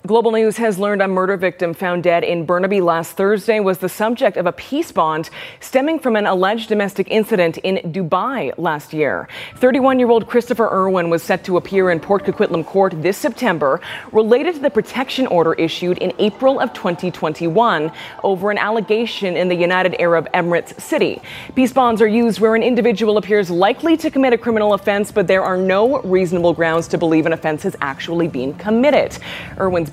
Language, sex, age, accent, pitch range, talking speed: English, female, 20-39, American, 165-220 Hz, 180 wpm